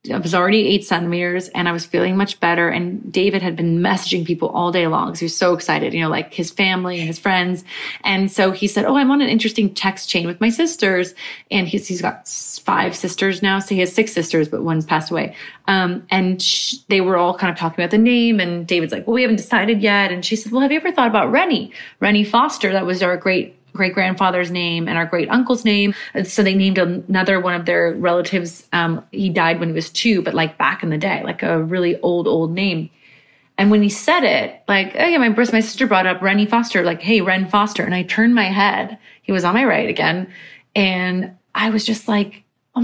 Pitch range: 175-220 Hz